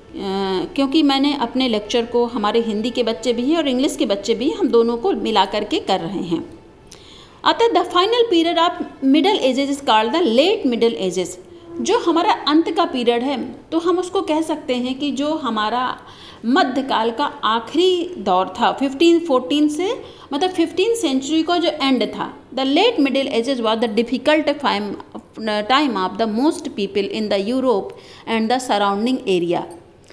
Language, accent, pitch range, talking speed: Hindi, native, 230-325 Hz, 170 wpm